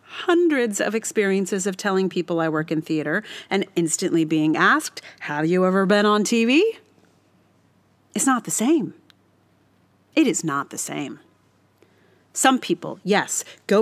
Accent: American